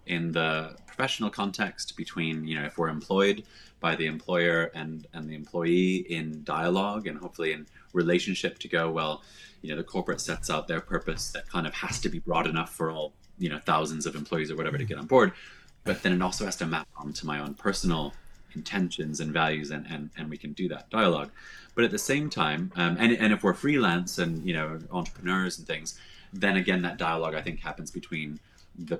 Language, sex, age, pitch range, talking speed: English, male, 20-39, 80-105 Hz, 215 wpm